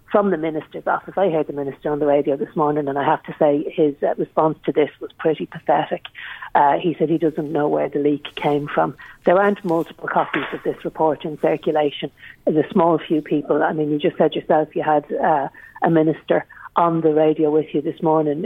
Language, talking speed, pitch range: English, 220 wpm, 150-170 Hz